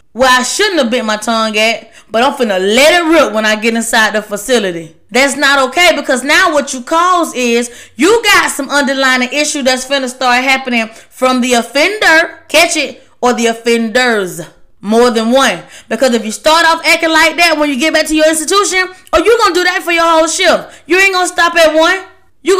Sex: female